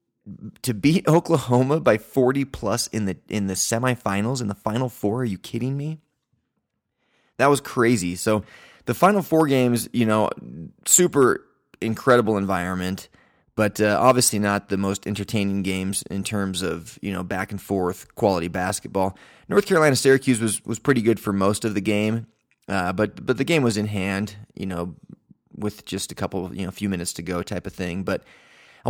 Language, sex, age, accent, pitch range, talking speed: English, male, 20-39, American, 95-120 Hz, 175 wpm